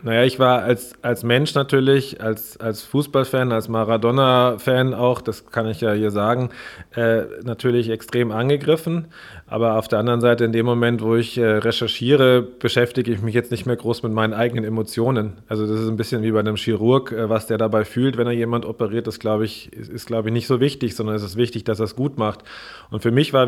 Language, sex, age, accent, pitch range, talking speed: German, male, 30-49, German, 115-140 Hz, 215 wpm